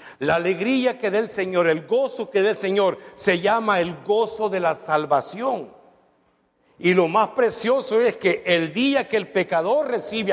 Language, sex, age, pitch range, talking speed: Spanish, male, 60-79, 175-235 Hz, 180 wpm